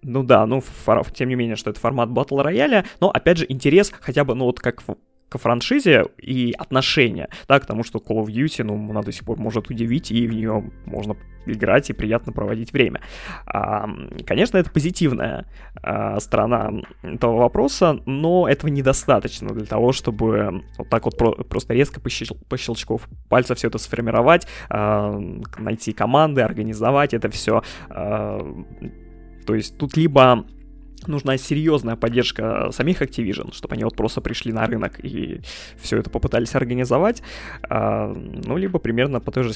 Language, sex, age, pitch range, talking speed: Russian, male, 20-39, 110-135 Hz, 170 wpm